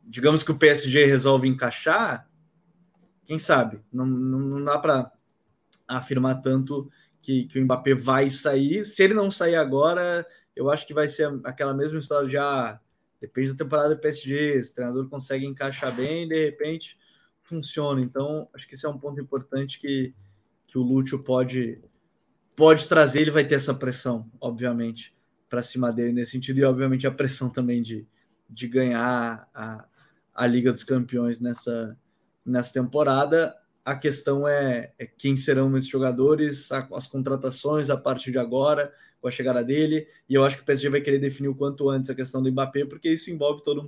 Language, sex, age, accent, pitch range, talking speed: Portuguese, male, 20-39, Brazilian, 125-145 Hz, 175 wpm